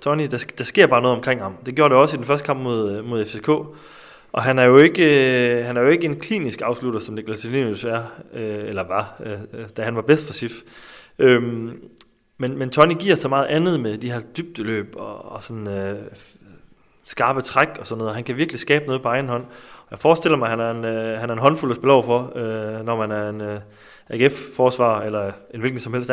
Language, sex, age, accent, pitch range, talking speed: Danish, male, 30-49, native, 110-135 Hz, 240 wpm